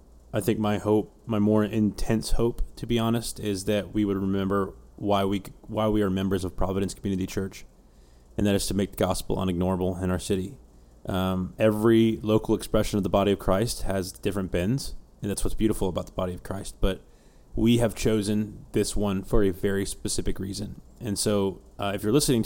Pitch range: 100-110 Hz